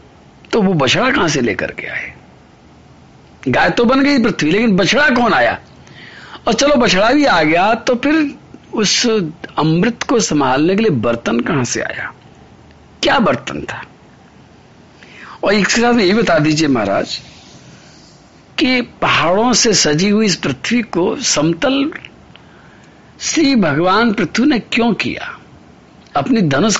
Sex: male